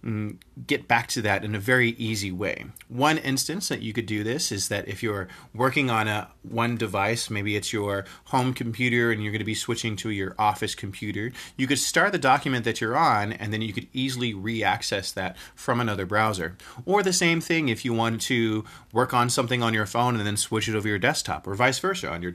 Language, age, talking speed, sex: English, 30-49, 225 wpm, male